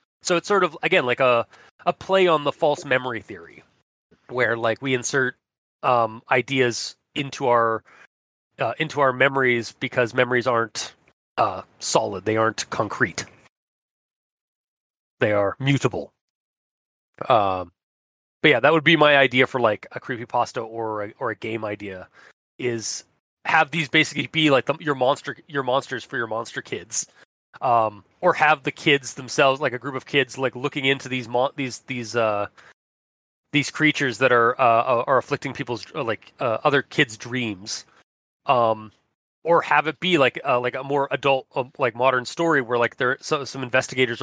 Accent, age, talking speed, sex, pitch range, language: American, 30-49, 165 wpm, male, 115-140 Hz, English